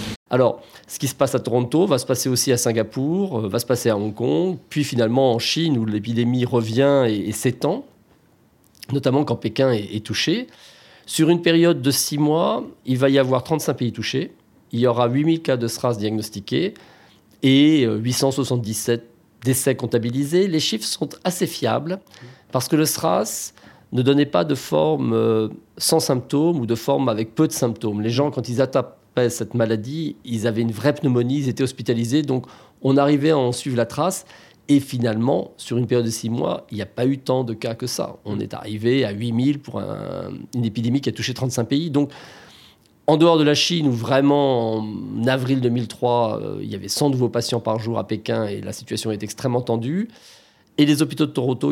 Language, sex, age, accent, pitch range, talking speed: French, male, 40-59, French, 115-145 Hz, 195 wpm